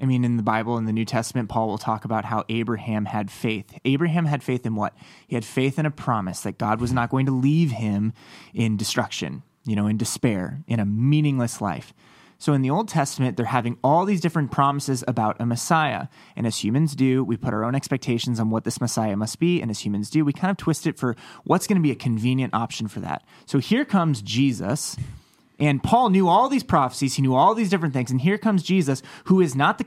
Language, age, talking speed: English, 30-49, 235 wpm